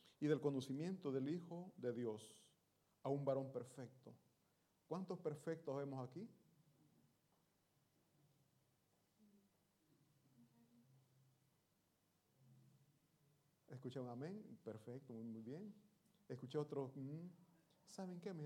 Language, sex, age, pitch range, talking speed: Italian, male, 40-59, 140-185 Hz, 90 wpm